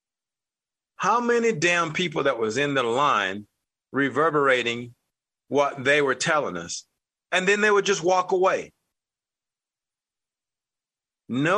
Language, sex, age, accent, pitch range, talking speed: English, male, 40-59, American, 130-185 Hz, 120 wpm